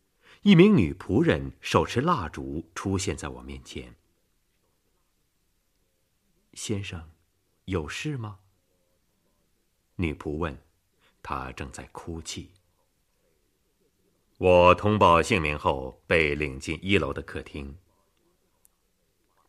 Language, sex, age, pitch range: Chinese, male, 30-49, 80-105 Hz